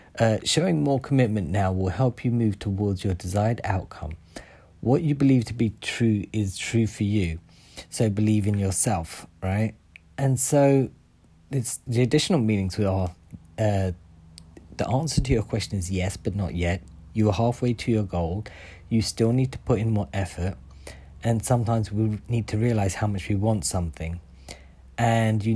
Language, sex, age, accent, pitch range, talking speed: English, male, 40-59, British, 90-115 Hz, 170 wpm